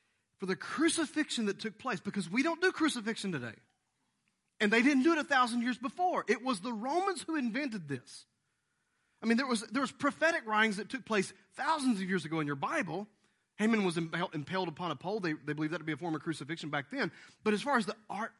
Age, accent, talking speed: 30-49, American, 220 wpm